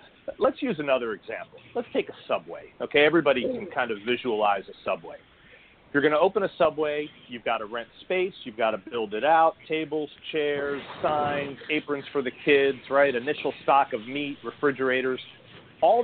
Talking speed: 175 wpm